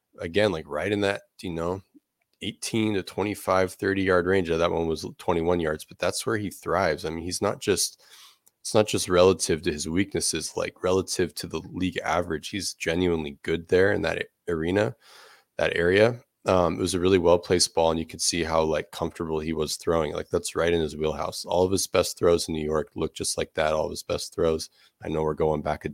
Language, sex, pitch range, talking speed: English, male, 80-95 Hz, 225 wpm